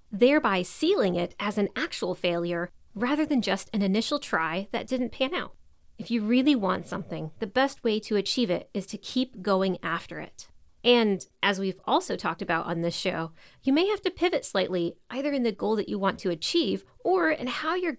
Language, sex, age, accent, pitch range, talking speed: English, female, 30-49, American, 190-270 Hz, 205 wpm